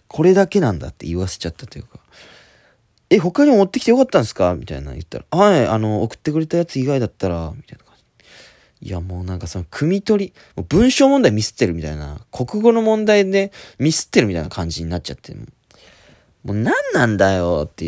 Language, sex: Japanese, male